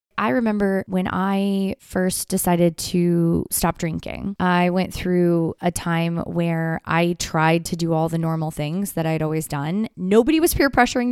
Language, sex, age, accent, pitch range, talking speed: English, female, 20-39, American, 165-210 Hz, 165 wpm